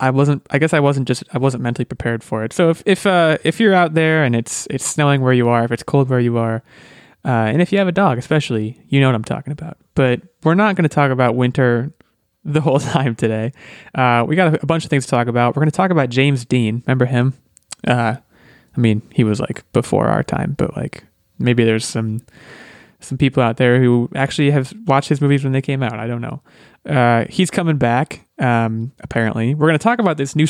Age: 20-39